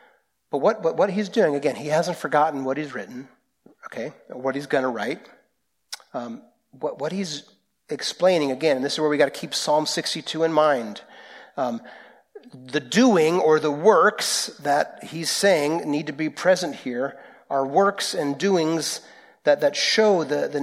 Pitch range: 145-210 Hz